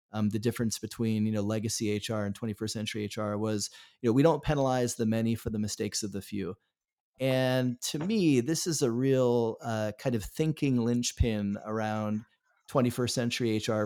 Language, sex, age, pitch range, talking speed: English, male, 30-49, 110-130 Hz, 180 wpm